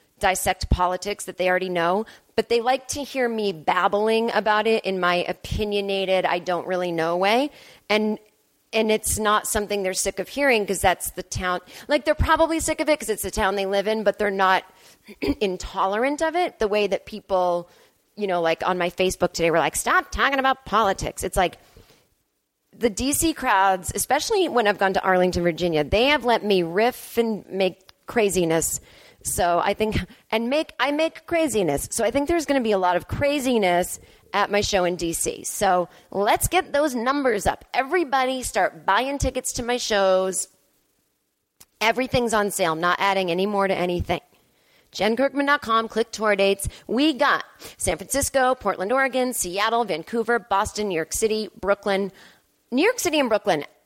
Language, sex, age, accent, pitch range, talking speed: English, female, 30-49, American, 185-255 Hz, 180 wpm